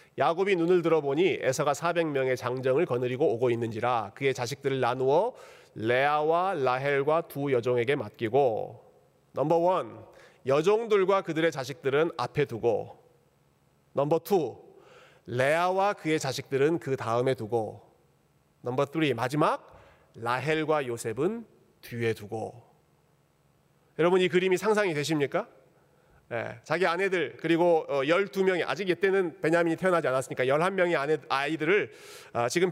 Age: 40-59